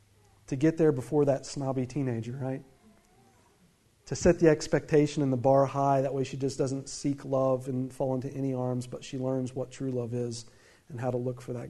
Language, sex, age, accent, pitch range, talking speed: English, male, 40-59, American, 130-145 Hz, 210 wpm